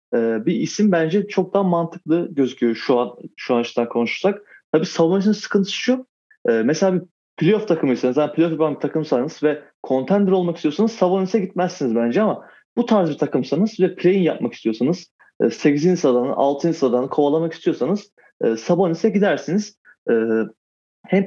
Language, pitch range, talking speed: Turkish, 135-195 Hz, 140 wpm